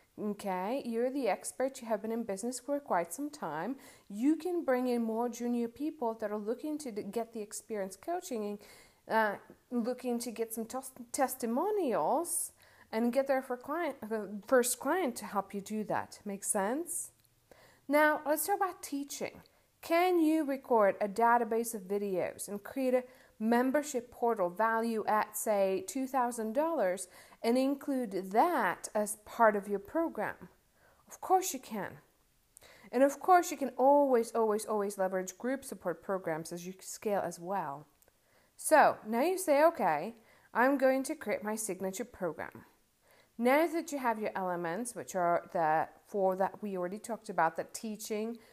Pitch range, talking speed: 200-265 Hz, 160 wpm